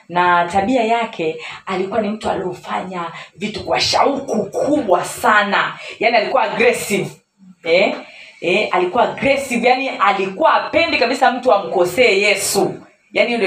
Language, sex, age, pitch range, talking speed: Swahili, female, 30-49, 160-235 Hz, 125 wpm